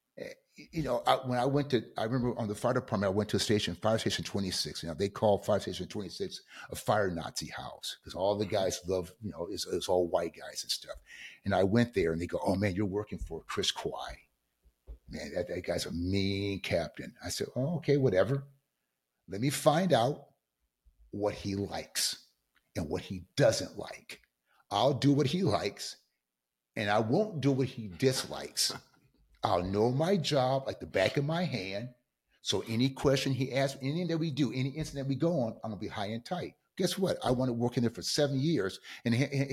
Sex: male